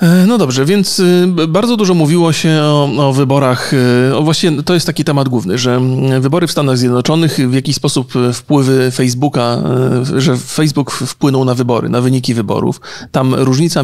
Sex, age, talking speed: male, 40-59, 160 wpm